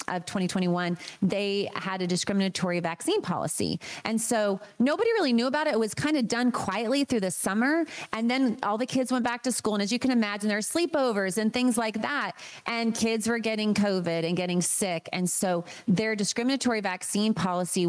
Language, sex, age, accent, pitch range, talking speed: English, female, 30-49, American, 190-240 Hz, 200 wpm